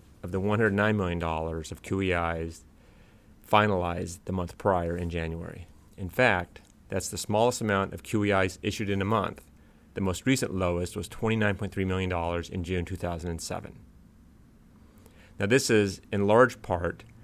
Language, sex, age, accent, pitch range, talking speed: English, male, 30-49, American, 90-105 Hz, 145 wpm